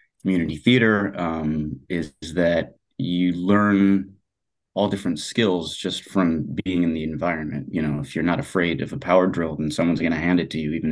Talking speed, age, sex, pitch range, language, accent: 190 wpm, 30-49, male, 80-95 Hz, English, American